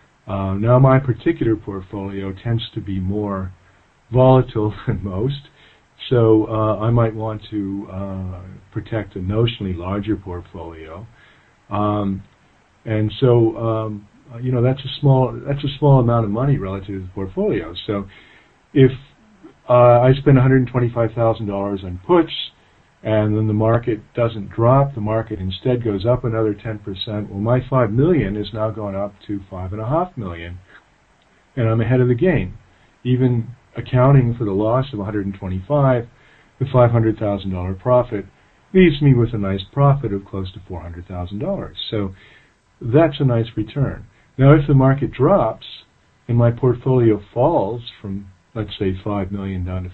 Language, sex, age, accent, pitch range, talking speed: English, male, 50-69, American, 100-125 Hz, 165 wpm